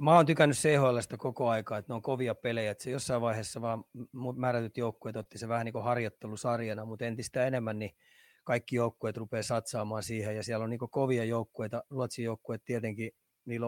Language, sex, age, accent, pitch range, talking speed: Finnish, male, 30-49, native, 110-125 Hz, 195 wpm